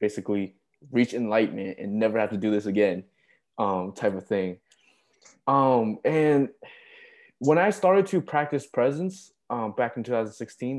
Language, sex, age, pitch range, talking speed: English, male, 20-39, 100-140 Hz, 145 wpm